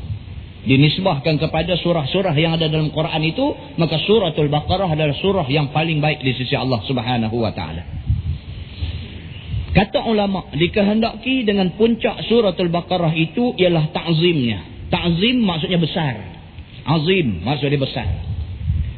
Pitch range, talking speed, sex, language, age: 125-185 Hz, 120 wpm, male, Malay, 40-59